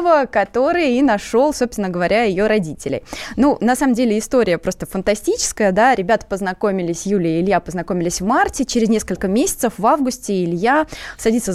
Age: 20-39